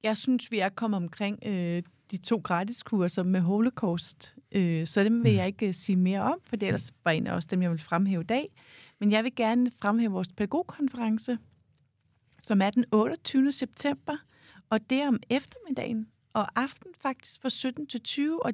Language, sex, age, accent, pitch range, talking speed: Danish, female, 40-59, native, 190-245 Hz, 195 wpm